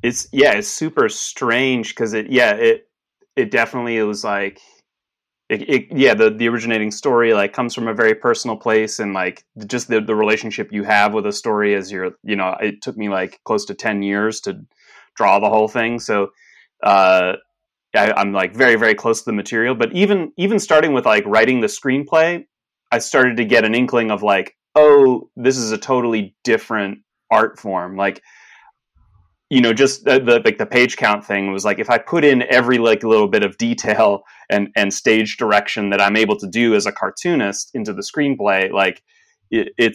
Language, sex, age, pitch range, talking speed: English, male, 30-49, 105-130 Hz, 200 wpm